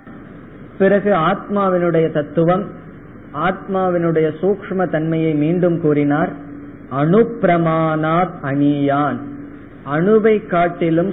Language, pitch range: Tamil, 145-180 Hz